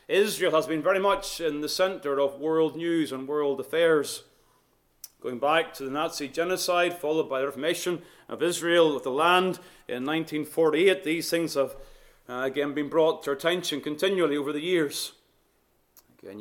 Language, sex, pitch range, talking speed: English, male, 150-180 Hz, 165 wpm